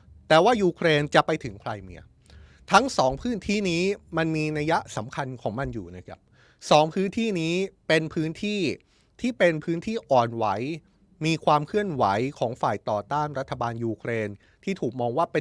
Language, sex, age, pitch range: Thai, male, 20-39, 115-170 Hz